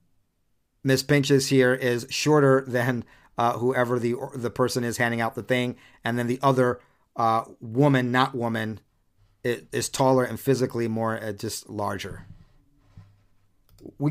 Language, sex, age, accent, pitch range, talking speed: English, male, 40-59, American, 110-145 Hz, 150 wpm